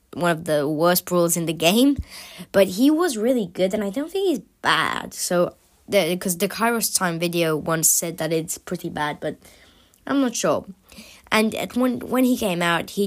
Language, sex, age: English, female, 20-39